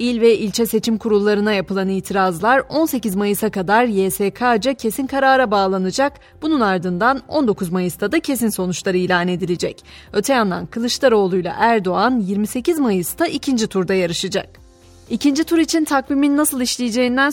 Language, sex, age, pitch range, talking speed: Turkish, female, 30-49, 195-265 Hz, 135 wpm